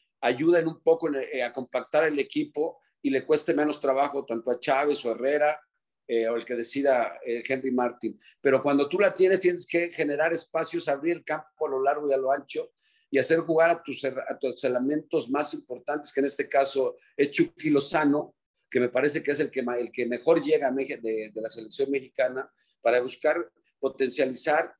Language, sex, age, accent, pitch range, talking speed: Spanish, male, 50-69, Mexican, 135-165 Hz, 195 wpm